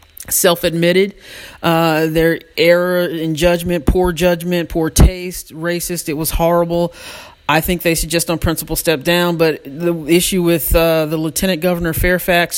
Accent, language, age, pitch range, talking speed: American, English, 40-59, 165-185 Hz, 155 wpm